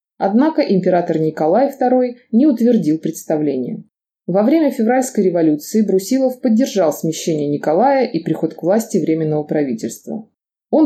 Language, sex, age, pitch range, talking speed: Russian, female, 20-39, 165-225 Hz, 120 wpm